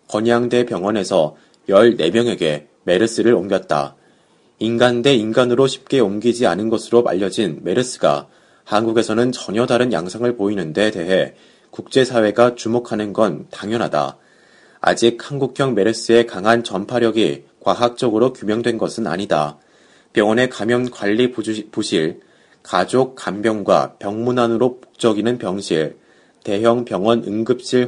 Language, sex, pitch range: Korean, male, 110-120 Hz